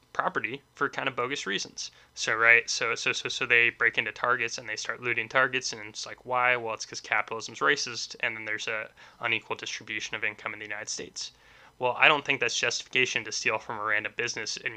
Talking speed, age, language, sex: 225 wpm, 10-29, English, male